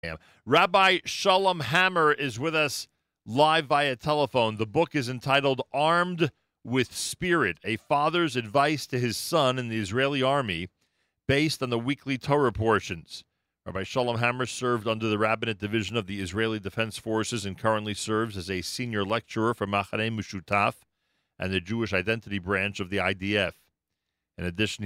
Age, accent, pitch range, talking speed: 40-59, American, 90-115 Hz, 155 wpm